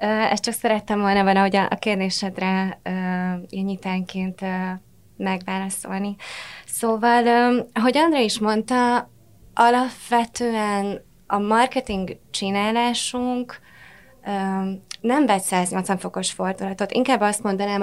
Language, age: Hungarian, 20-39